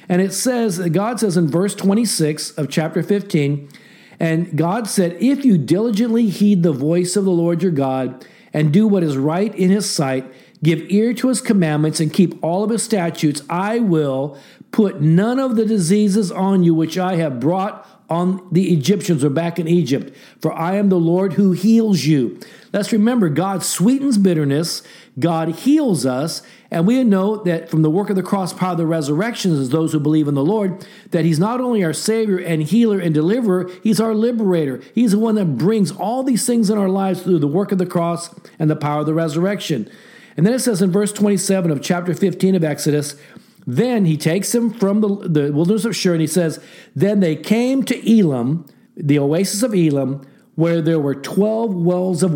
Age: 50-69